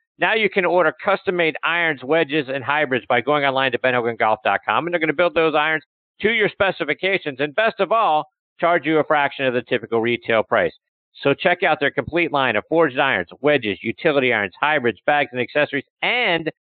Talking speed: 195 wpm